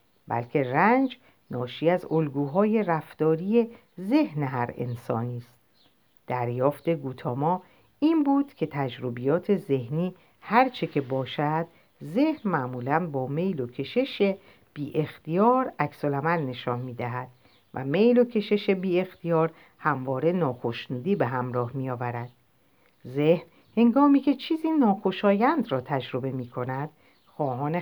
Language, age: Persian, 50-69